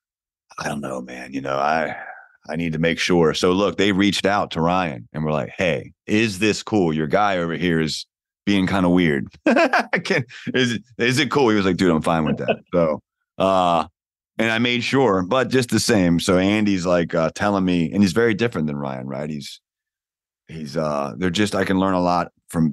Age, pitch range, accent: 30-49, 80-100 Hz, American